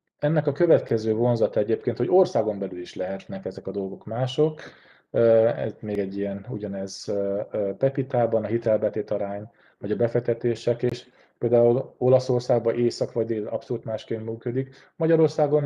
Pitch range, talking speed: 105-125 Hz, 140 wpm